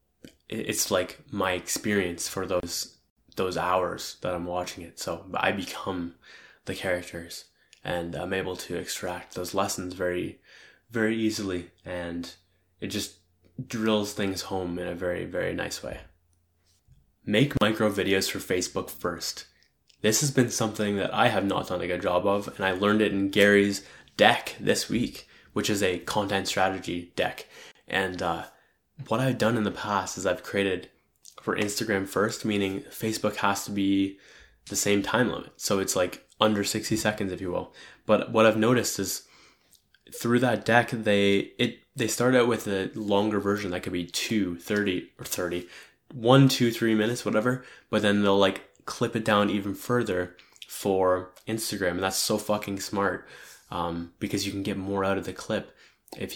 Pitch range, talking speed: 90-110 Hz, 170 wpm